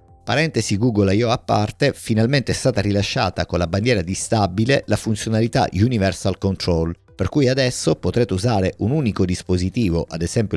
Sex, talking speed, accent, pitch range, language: male, 160 wpm, native, 90-115 Hz, Italian